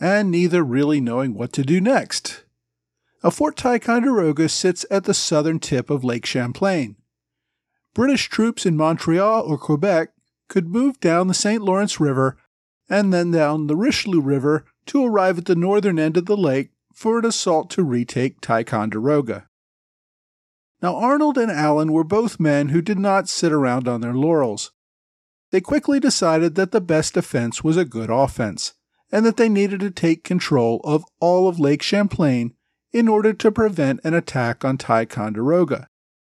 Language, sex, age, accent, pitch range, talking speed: English, male, 40-59, American, 140-200 Hz, 165 wpm